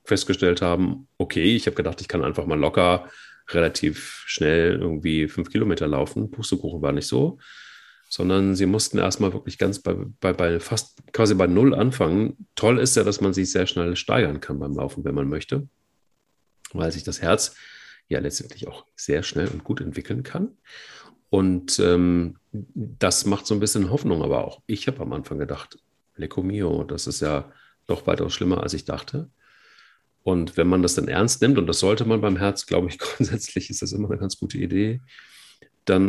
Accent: German